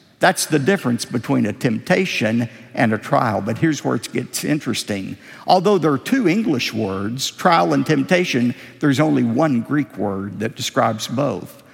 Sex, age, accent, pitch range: male, 50-69, American, 130-185 Hz